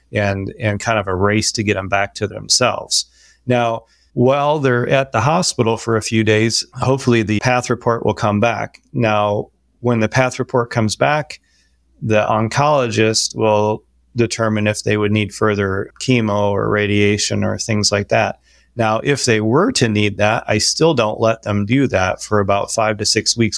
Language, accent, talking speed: English, American, 185 wpm